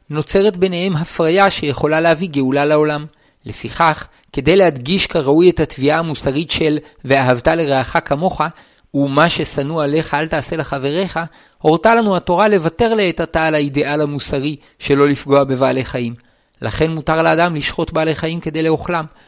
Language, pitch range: Hebrew, 150-185 Hz